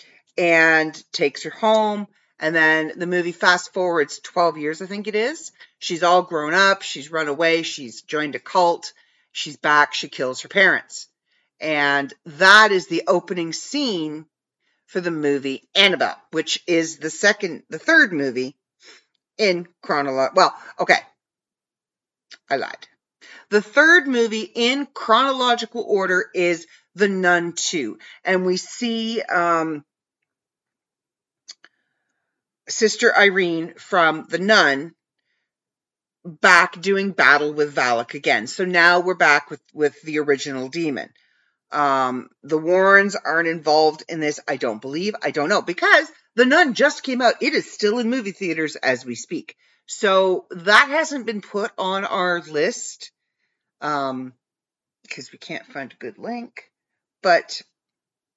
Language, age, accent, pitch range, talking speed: English, 40-59, American, 155-210 Hz, 140 wpm